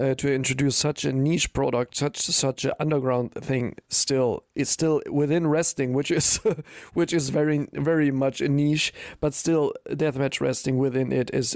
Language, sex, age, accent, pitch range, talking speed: English, male, 40-59, German, 130-155 Hz, 170 wpm